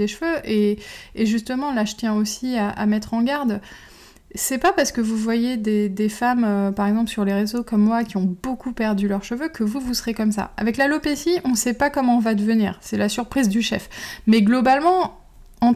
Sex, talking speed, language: female, 225 wpm, French